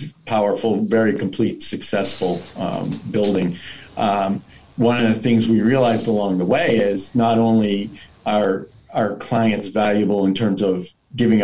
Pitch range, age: 95-115 Hz, 50-69